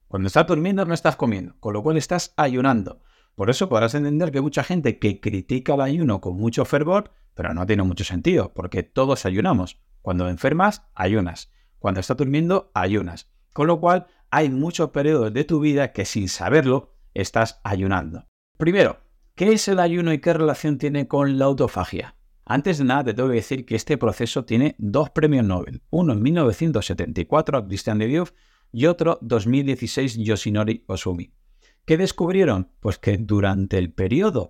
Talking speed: 175 wpm